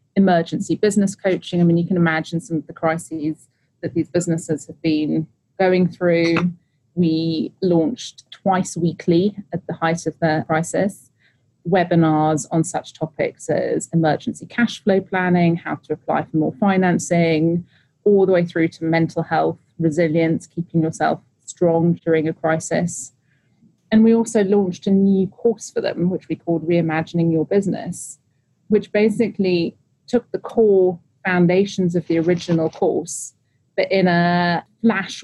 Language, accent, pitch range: English, British, 160-185 Hz